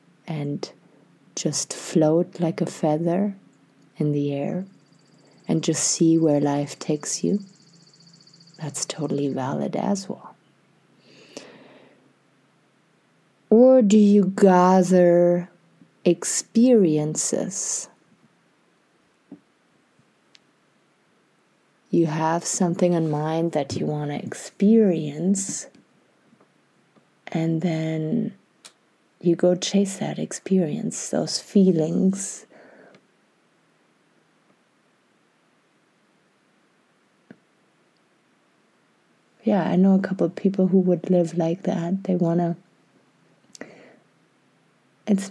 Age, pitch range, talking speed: 30-49, 165-195 Hz, 80 wpm